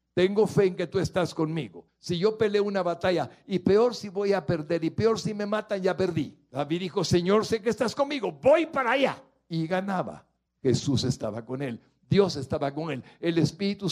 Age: 60-79